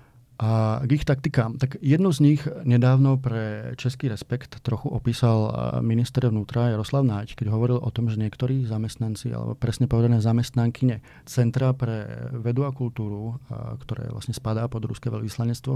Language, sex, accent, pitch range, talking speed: Czech, male, native, 115-130 Hz, 150 wpm